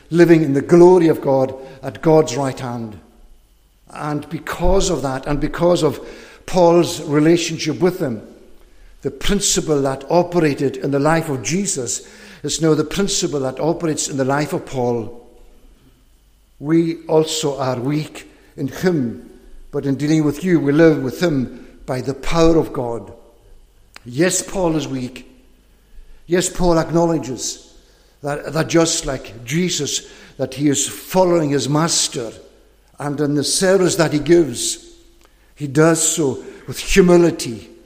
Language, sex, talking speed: English, male, 145 wpm